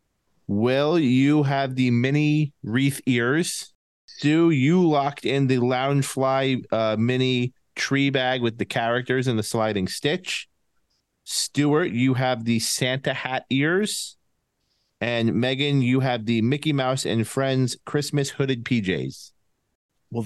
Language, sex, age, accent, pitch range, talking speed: English, male, 30-49, American, 120-145 Hz, 135 wpm